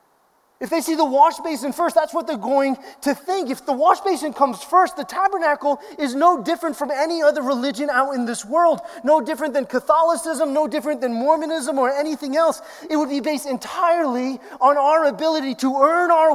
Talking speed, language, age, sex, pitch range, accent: 200 wpm, English, 20-39, male, 245-320 Hz, American